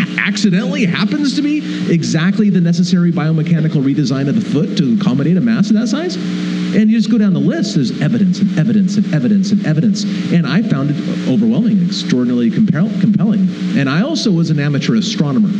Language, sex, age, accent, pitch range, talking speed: English, male, 40-59, American, 180-215 Hz, 185 wpm